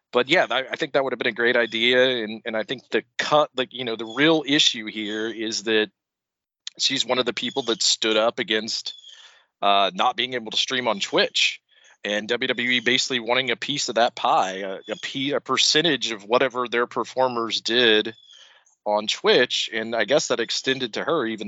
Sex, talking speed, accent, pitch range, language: male, 200 wpm, American, 110-130 Hz, English